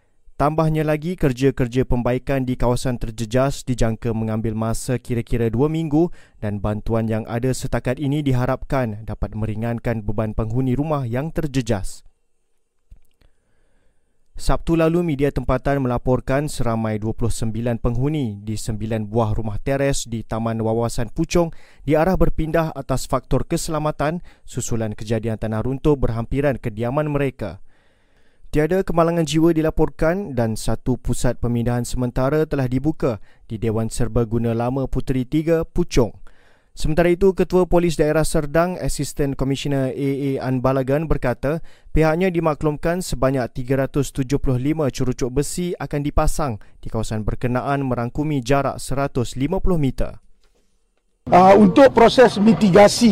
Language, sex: Malay, male